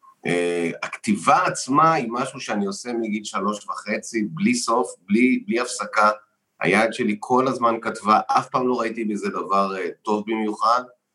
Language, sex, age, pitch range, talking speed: Hebrew, male, 30-49, 105-145 Hz, 155 wpm